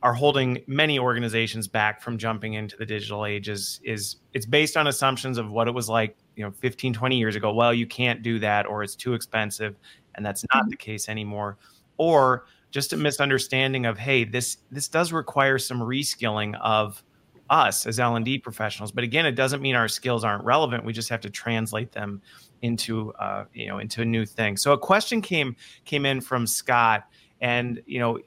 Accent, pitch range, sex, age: American, 115-140 Hz, male, 30-49